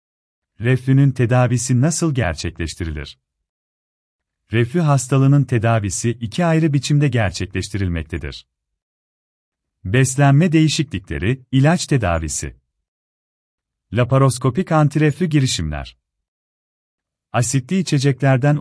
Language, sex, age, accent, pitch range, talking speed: Turkish, male, 40-59, native, 95-145 Hz, 65 wpm